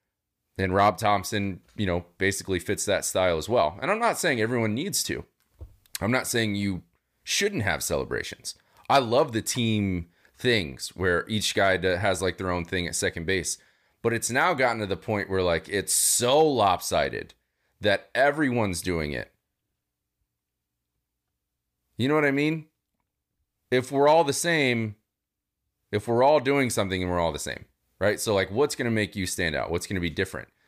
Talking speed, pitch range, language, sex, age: 180 wpm, 85-115 Hz, English, male, 30-49